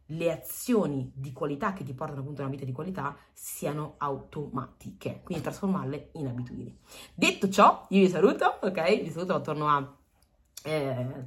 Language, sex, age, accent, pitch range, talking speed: Italian, female, 30-49, native, 140-195 Hz, 160 wpm